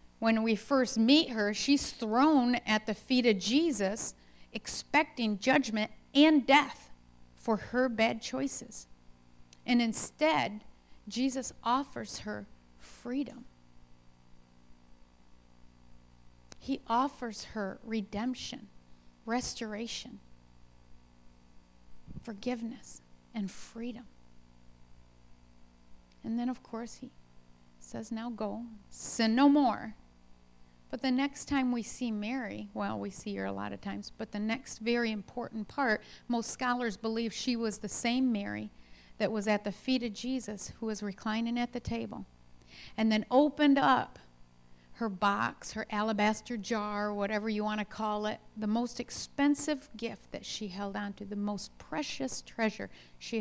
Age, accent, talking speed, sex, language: 40-59, American, 130 wpm, female, English